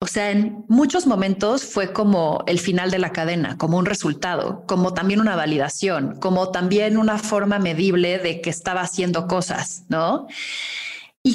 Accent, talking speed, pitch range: Mexican, 165 wpm, 175-235 Hz